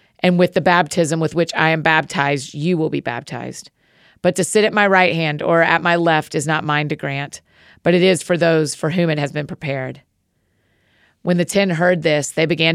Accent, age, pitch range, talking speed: American, 40-59, 150-180 Hz, 220 wpm